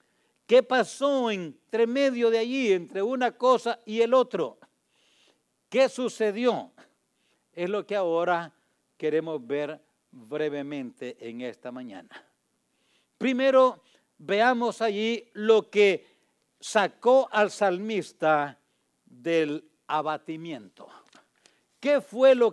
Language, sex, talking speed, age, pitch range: English, male, 100 wpm, 60-79, 160-230 Hz